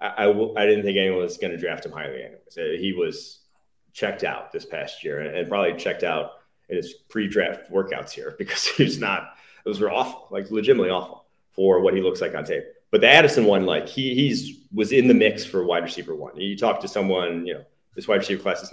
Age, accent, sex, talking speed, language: 30-49, American, male, 235 wpm, English